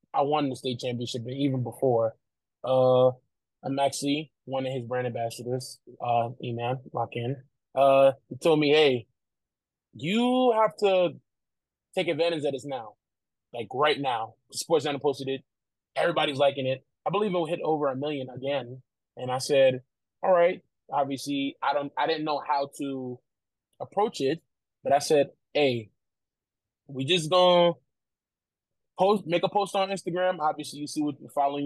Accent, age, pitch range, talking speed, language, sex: American, 20-39, 125-150 Hz, 160 wpm, English, male